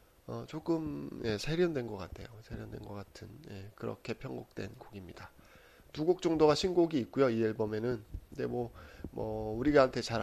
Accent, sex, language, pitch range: native, male, Korean, 105-130 Hz